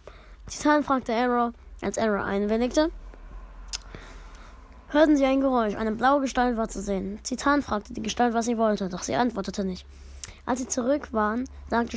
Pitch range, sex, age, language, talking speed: 210-275 Hz, female, 20-39, German, 160 wpm